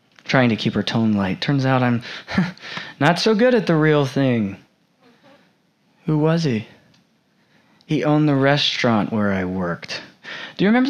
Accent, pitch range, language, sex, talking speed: American, 115-170 Hz, English, male, 160 wpm